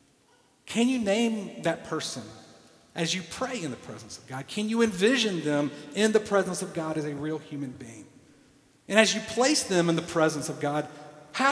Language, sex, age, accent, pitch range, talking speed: English, male, 40-59, American, 155-210 Hz, 200 wpm